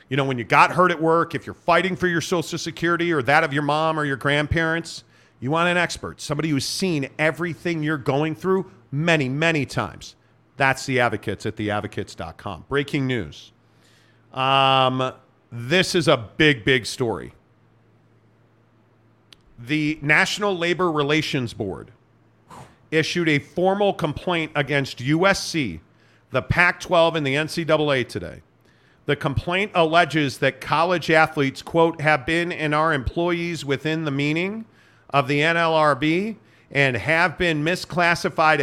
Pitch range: 130-170 Hz